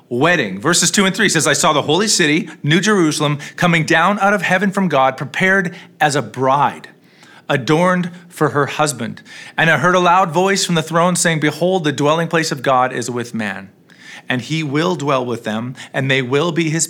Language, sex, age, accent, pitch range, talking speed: English, male, 40-59, American, 150-190 Hz, 205 wpm